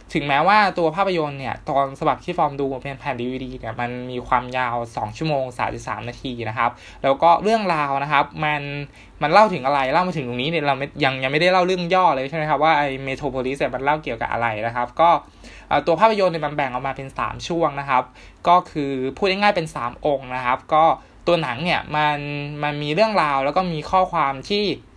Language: Thai